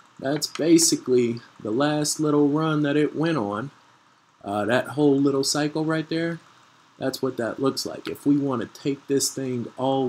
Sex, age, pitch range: male, 30-49, 100-135 Hz